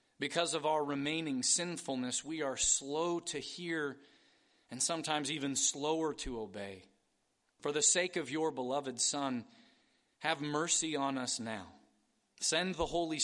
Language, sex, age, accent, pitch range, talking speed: English, male, 30-49, American, 125-160 Hz, 140 wpm